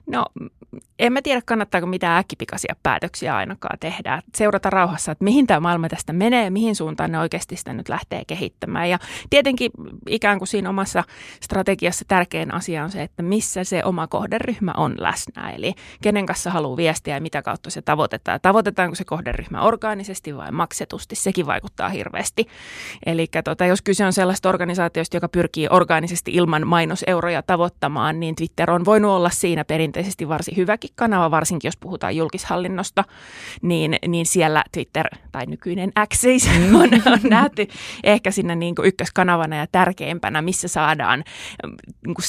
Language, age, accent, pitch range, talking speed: Finnish, 20-39, native, 165-200 Hz, 155 wpm